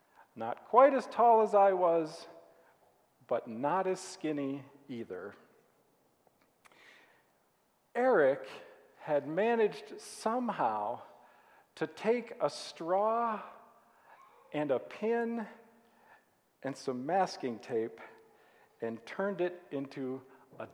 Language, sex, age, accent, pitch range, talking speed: English, male, 50-69, American, 150-225 Hz, 95 wpm